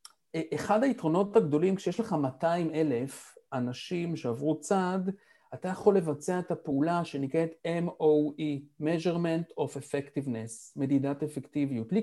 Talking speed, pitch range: 110 wpm, 150-205 Hz